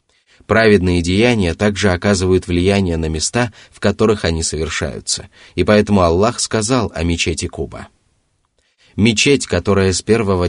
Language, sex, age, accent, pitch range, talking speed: Russian, male, 30-49, native, 90-110 Hz, 125 wpm